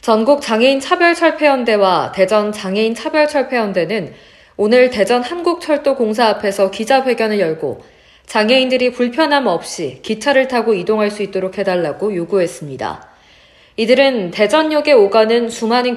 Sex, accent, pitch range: female, native, 200-270 Hz